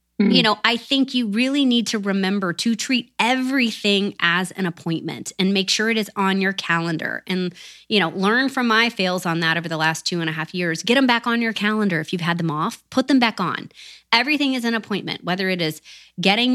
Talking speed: 230 wpm